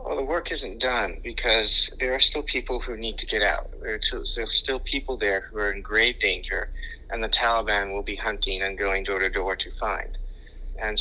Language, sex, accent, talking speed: English, male, American, 205 wpm